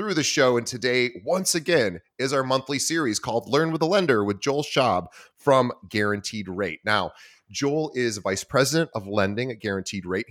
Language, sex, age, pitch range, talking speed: English, male, 30-49, 100-130 Hz, 180 wpm